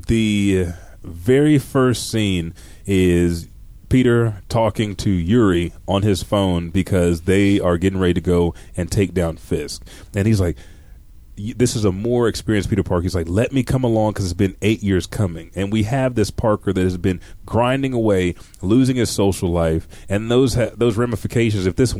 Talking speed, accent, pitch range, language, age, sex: 180 wpm, American, 90-110 Hz, English, 30-49, male